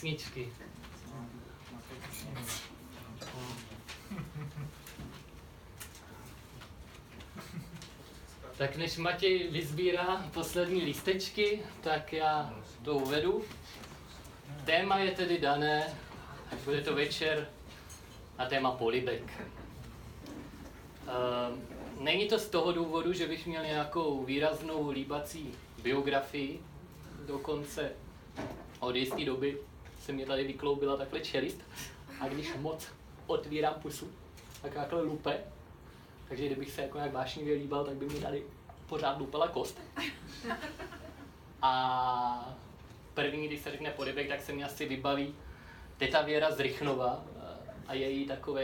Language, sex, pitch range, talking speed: Czech, male, 125-155 Hz, 105 wpm